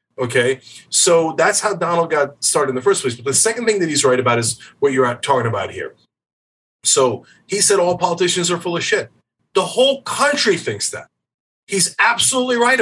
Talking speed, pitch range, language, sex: 200 wpm, 155-210 Hz, English, male